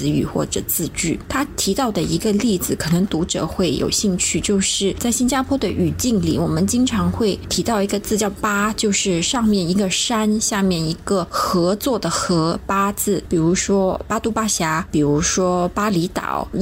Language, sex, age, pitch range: Chinese, female, 20-39, 175-215 Hz